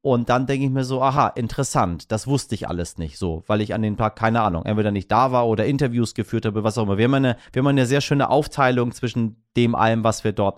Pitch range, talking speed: 110-135 Hz, 255 wpm